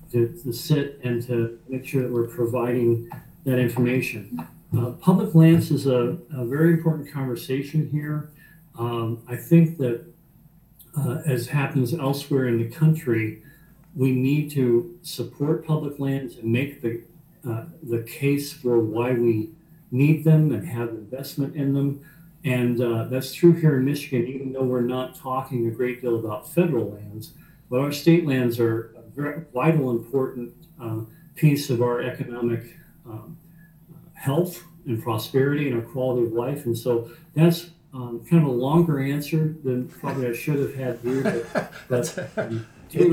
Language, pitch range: English, 120-155 Hz